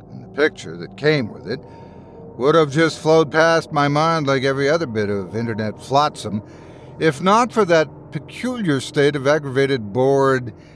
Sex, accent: male, American